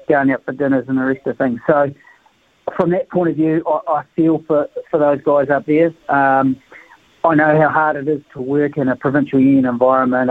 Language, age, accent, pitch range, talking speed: English, 40-59, Australian, 135-160 Hz, 215 wpm